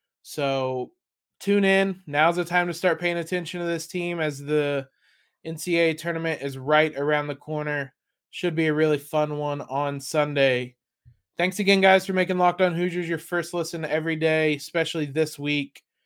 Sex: male